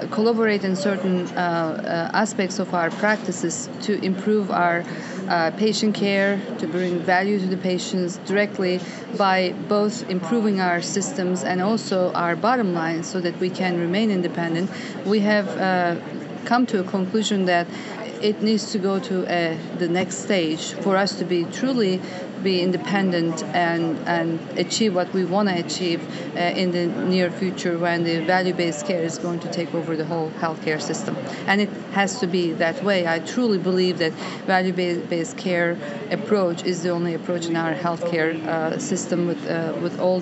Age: 40-59